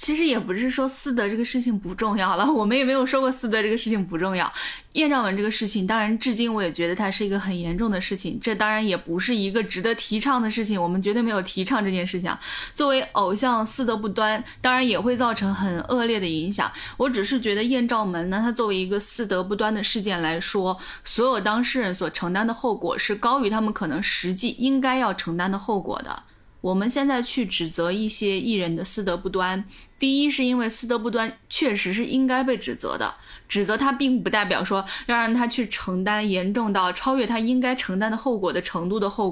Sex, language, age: female, Chinese, 20-39